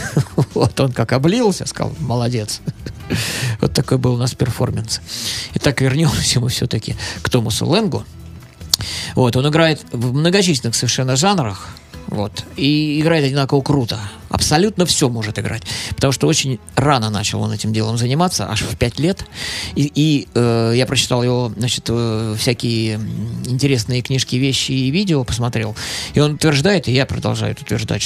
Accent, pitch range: native, 115-145 Hz